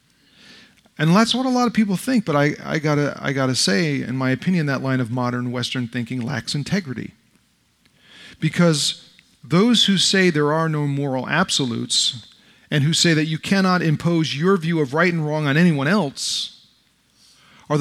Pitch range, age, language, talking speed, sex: 140-185 Hz, 40-59, English, 170 wpm, male